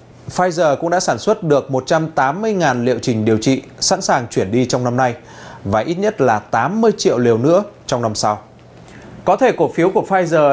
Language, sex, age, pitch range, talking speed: Vietnamese, male, 20-39, 130-180 Hz, 200 wpm